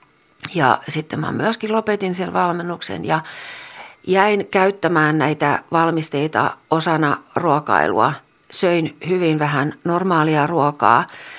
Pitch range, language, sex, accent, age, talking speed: 150-190 Hz, Finnish, female, native, 50-69, 100 wpm